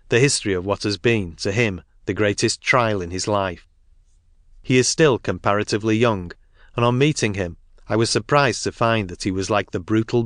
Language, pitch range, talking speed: English, 95-120 Hz, 200 wpm